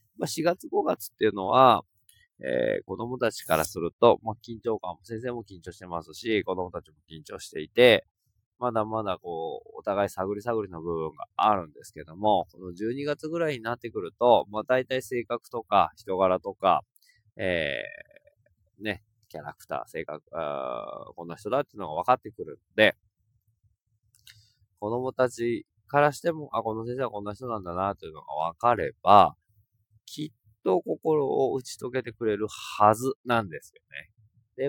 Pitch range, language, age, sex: 95-125 Hz, Japanese, 20-39, male